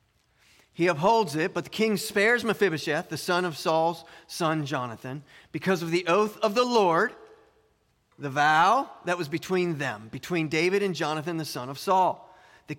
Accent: American